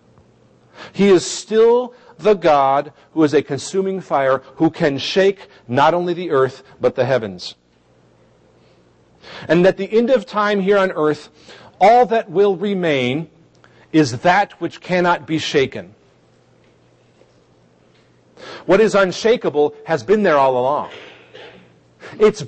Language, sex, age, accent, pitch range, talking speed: English, male, 50-69, American, 135-200 Hz, 130 wpm